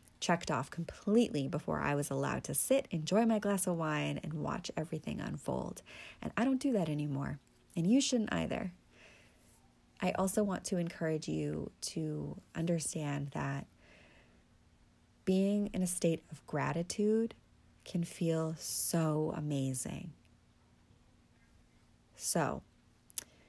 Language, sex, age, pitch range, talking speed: English, female, 30-49, 150-195 Hz, 125 wpm